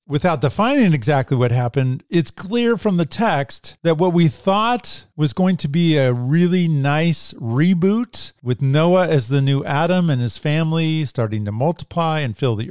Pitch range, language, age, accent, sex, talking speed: 115-155 Hz, English, 40-59, American, male, 175 wpm